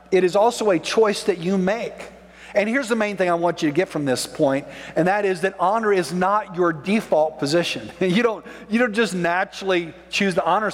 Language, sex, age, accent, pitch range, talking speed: English, male, 50-69, American, 170-235 Hz, 220 wpm